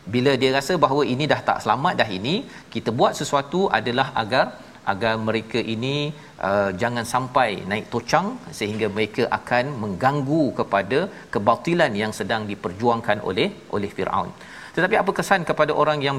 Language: Malayalam